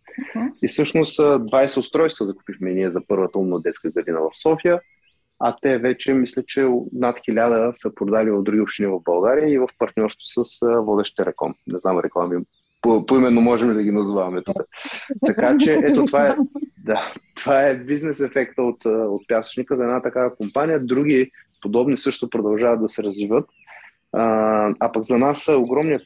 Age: 30-49